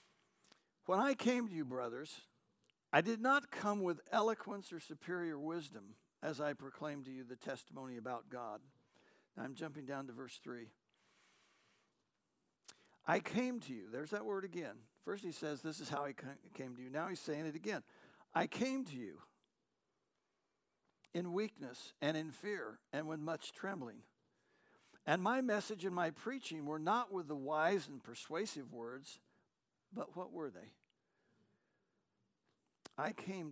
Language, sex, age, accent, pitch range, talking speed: English, male, 60-79, American, 135-195 Hz, 155 wpm